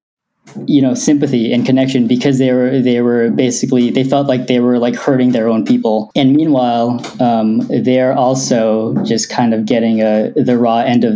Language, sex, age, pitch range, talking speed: English, male, 10-29, 115-130 Hz, 185 wpm